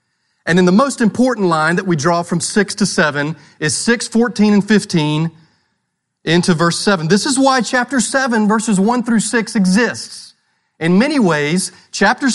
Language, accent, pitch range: English, American, 165-220 Hz